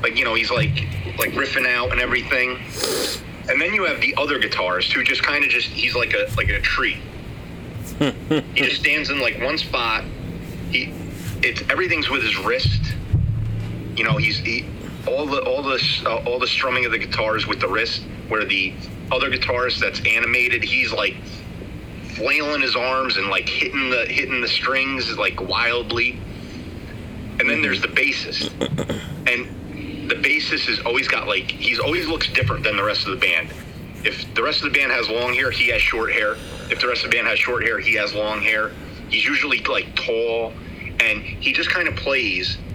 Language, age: English, 30-49